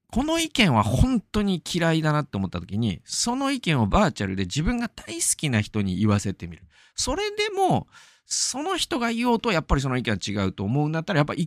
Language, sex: Japanese, male